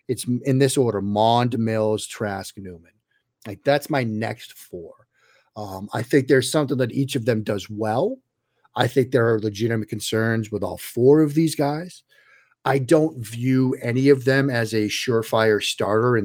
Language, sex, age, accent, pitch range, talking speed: English, male, 40-59, American, 105-130 Hz, 175 wpm